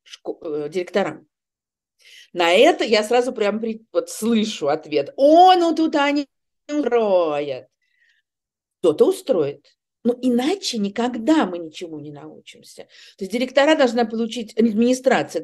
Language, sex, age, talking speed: Russian, female, 50-69, 125 wpm